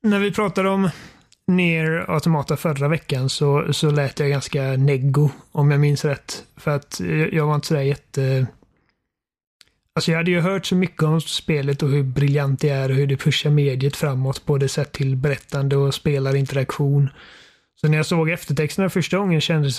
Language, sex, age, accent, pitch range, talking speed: Swedish, male, 30-49, native, 140-160 Hz, 190 wpm